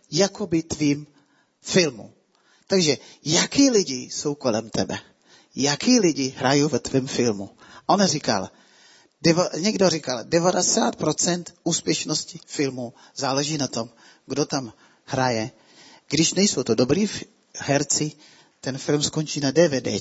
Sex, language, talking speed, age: male, Czech, 115 wpm, 30-49